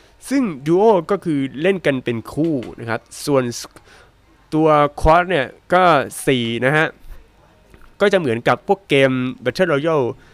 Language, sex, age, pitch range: Thai, male, 20-39, 115-155 Hz